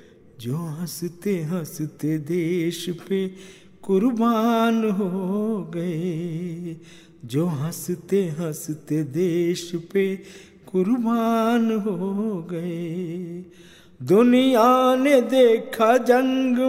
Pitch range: 180-260 Hz